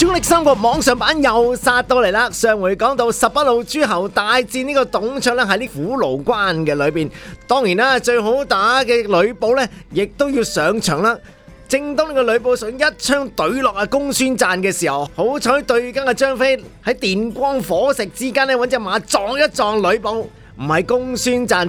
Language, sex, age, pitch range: Chinese, male, 30-49, 195-260 Hz